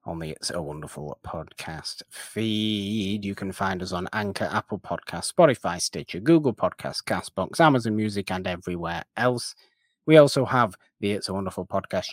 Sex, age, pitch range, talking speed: male, 30-49, 90-125 Hz, 160 wpm